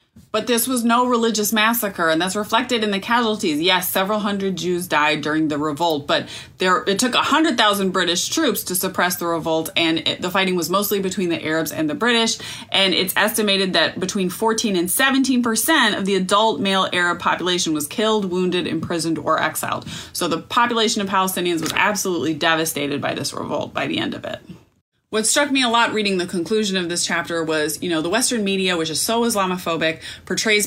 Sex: female